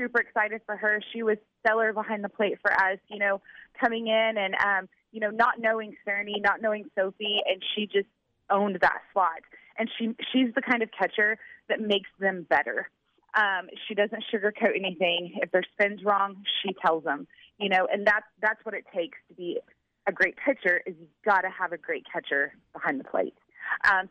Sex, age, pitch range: female, 20-39, 195-230 Hz